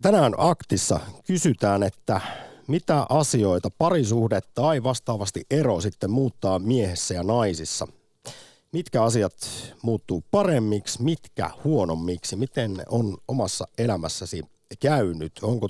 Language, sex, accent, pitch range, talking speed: Finnish, male, native, 95-120 Hz, 105 wpm